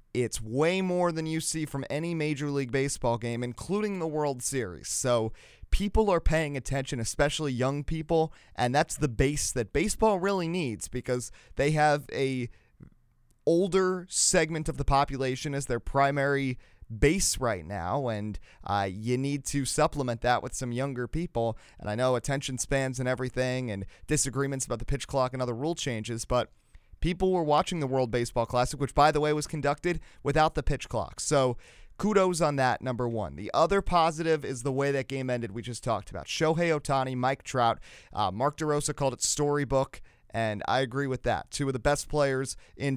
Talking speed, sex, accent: 185 wpm, male, American